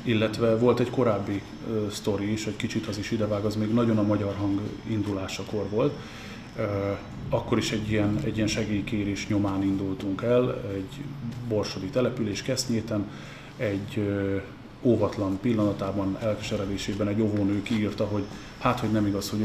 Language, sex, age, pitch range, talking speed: Hungarian, male, 30-49, 100-115 Hz, 150 wpm